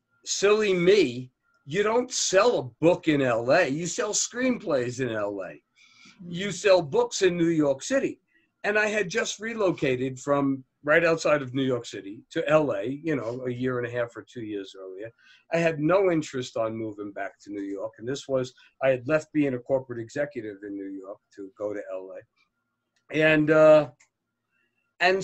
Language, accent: English, American